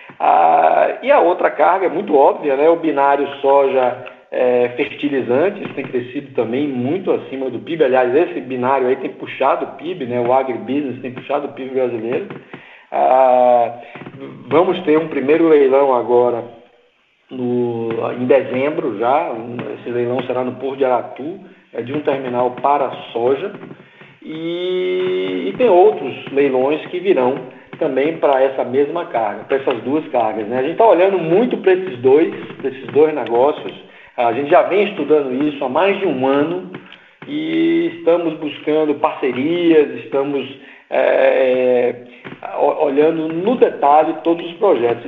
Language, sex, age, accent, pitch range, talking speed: Portuguese, male, 50-69, Brazilian, 125-180 Hz, 145 wpm